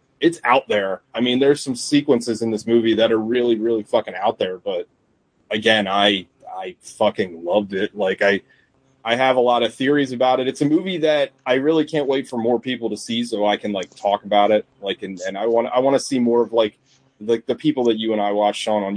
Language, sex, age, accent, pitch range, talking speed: English, male, 20-39, American, 110-135 Hz, 245 wpm